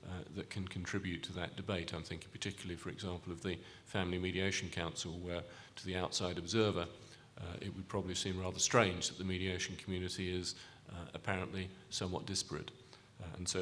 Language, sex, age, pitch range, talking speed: English, male, 40-59, 90-110 Hz, 180 wpm